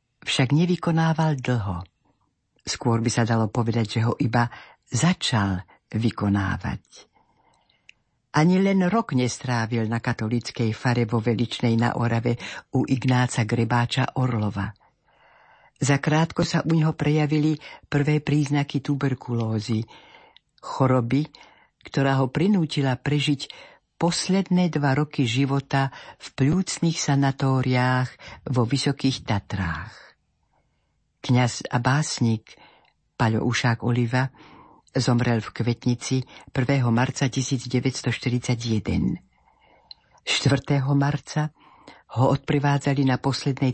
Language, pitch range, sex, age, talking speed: Slovak, 120-145 Hz, female, 50-69, 95 wpm